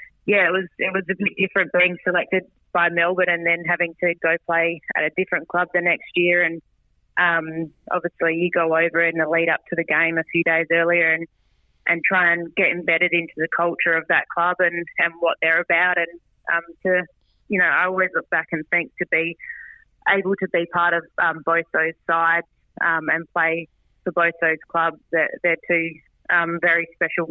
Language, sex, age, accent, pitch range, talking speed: English, female, 20-39, Australian, 160-175 Hz, 205 wpm